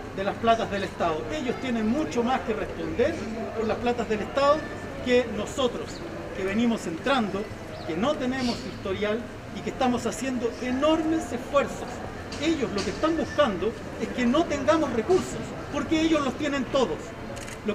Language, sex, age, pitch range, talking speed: Spanish, male, 40-59, 225-285 Hz, 160 wpm